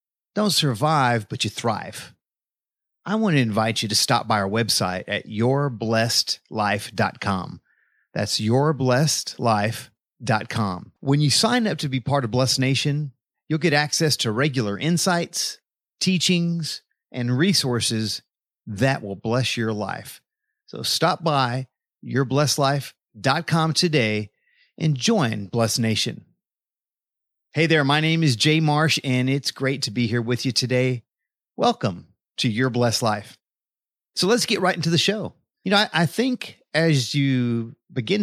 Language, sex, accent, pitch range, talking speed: English, male, American, 115-160 Hz, 140 wpm